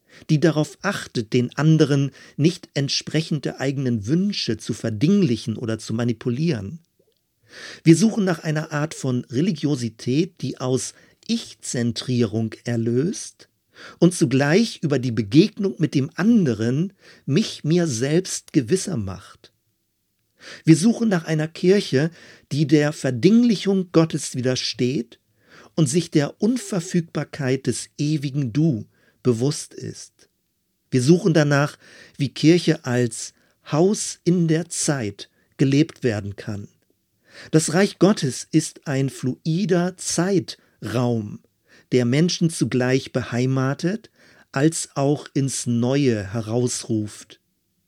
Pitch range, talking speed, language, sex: 125-170 Hz, 110 wpm, German, male